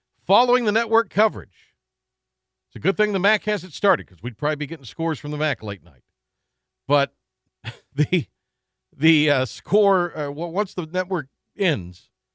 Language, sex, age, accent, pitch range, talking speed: English, male, 50-69, American, 110-165 Hz, 165 wpm